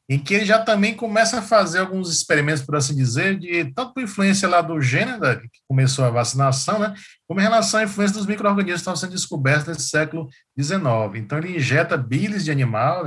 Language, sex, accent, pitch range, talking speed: Portuguese, male, Brazilian, 130-170 Hz, 205 wpm